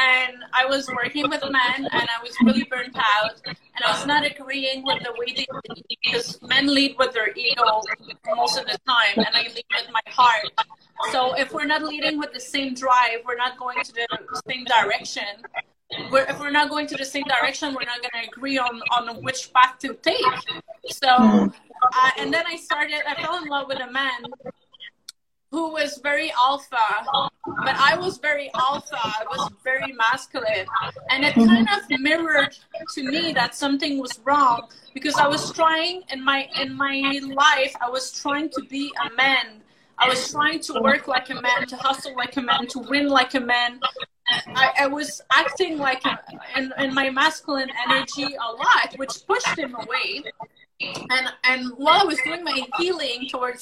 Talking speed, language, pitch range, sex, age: 190 wpm, English, 250-295 Hz, female, 30-49